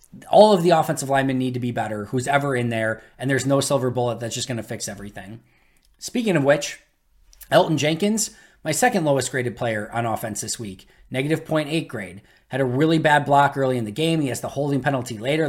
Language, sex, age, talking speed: English, male, 20-39, 215 wpm